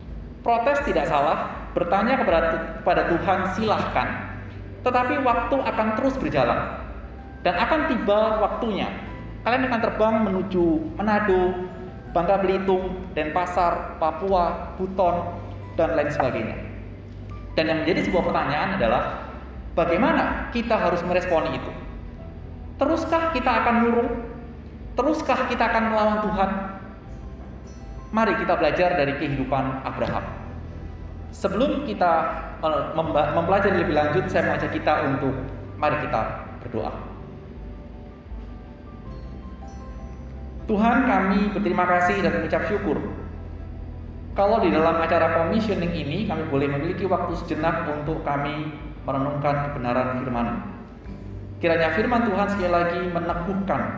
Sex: male